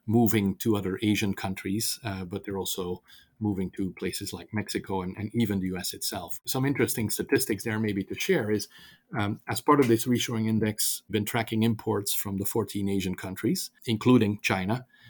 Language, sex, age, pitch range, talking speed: English, male, 40-59, 100-115 Hz, 180 wpm